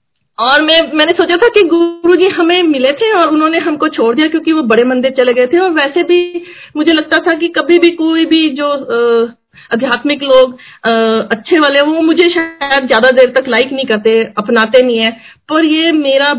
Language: Hindi